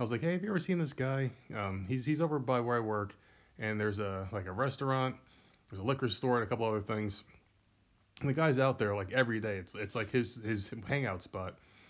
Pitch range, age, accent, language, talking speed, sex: 100-130 Hz, 20-39, American, English, 240 wpm, male